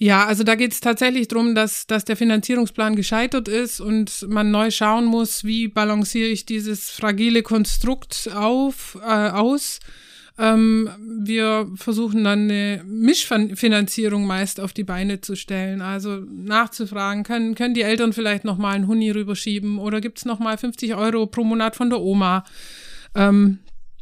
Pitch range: 180-220 Hz